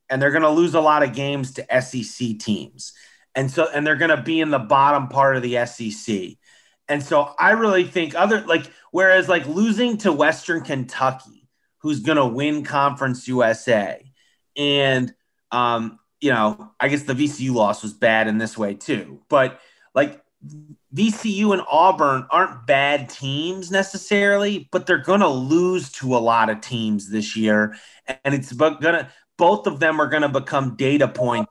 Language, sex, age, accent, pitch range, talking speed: English, male, 30-49, American, 115-160 Hz, 180 wpm